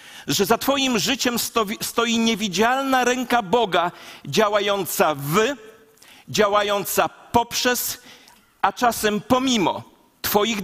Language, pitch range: Polish, 195-240 Hz